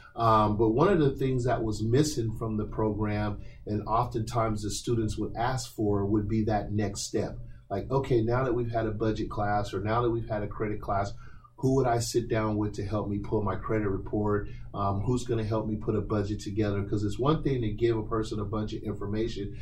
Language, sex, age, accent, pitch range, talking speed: English, male, 30-49, American, 105-120 Hz, 230 wpm